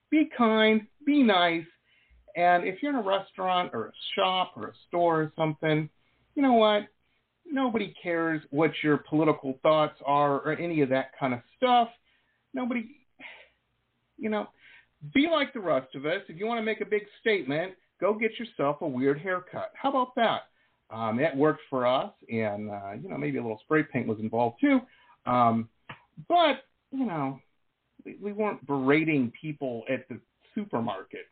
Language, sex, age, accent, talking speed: English, male, 50-69, American, 170 wpm